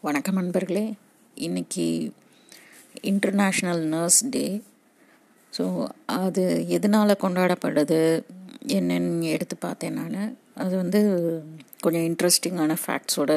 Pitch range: 160-205 Hz